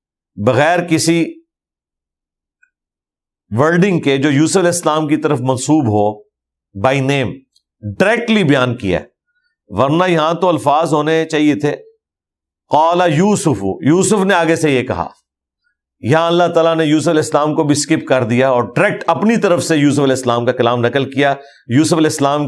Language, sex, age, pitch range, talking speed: Urdu, male, 50-69, 130-165 Hz, 155 wpm